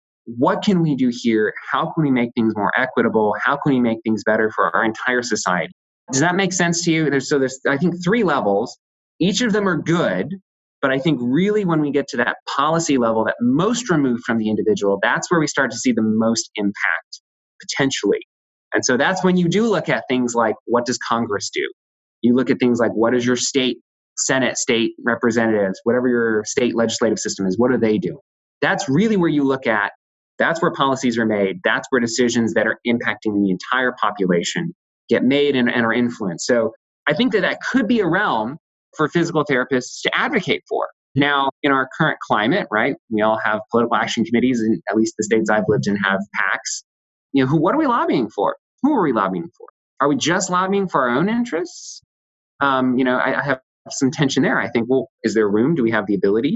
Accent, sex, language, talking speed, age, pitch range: American, male, English, 220 wpm, 20-39, 110-155 Hz